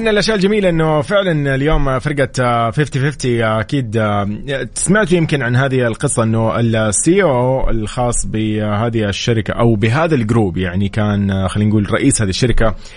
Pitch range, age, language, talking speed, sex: 105-140 Hz, 20-39, English, 135 wpm, male